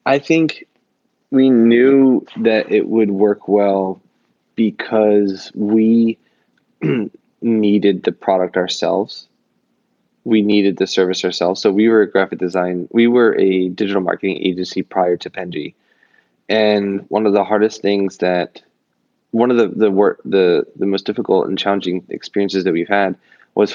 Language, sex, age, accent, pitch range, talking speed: English, male, 20-39, American, 90-105 Hz, 150 wpm